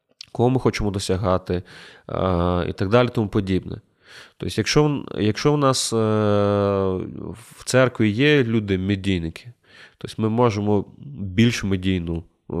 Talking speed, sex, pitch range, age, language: 105 wpm, male, 95-115 Hz, 20-39, Ukrainian